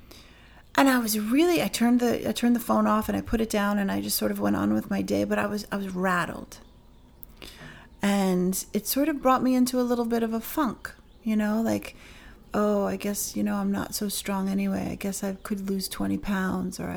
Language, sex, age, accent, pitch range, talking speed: English, female, 40-59, American, 185-235 Hz, 235 wpm